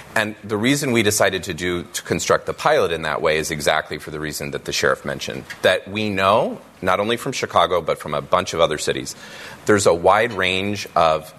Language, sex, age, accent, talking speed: English, male, 30-49, American, 220 wpm